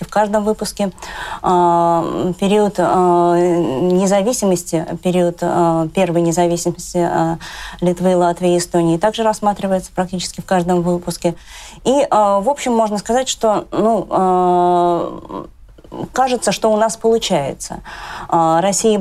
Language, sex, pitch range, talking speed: Russian, female, 170-205 Hz, 100 wpm